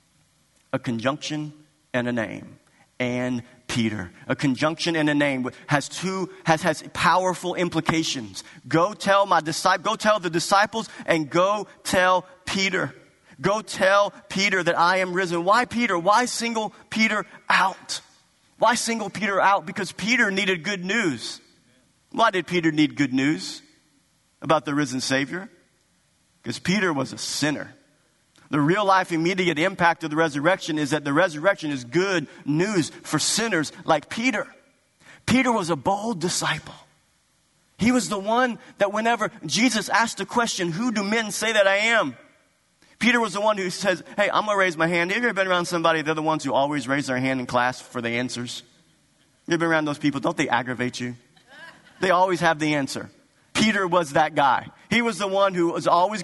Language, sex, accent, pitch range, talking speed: English, male, American, 150-205 Hz, 175 wpm